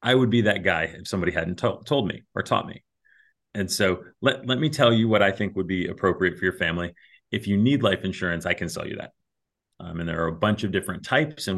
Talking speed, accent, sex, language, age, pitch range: 260 wpm, American, male, English, 30-49, 85-110 Hz